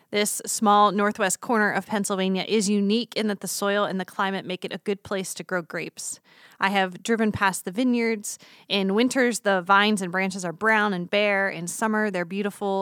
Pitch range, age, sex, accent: 185-220 Hz, 20-39, female, American